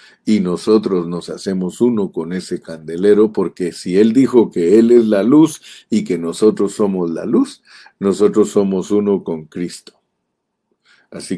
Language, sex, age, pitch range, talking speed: Spanish, male, 50-69, 90-120 Hz, 155 wpm